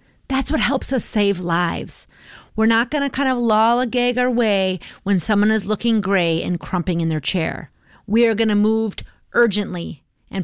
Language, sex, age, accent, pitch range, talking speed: English, female, 30-49, American, 185-245 Hz, 195 wpm